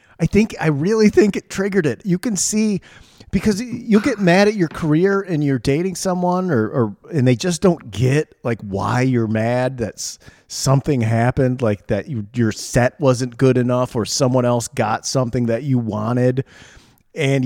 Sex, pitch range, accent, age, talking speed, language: male, 120-170 Hz, American, 40-59, 180 wpm, English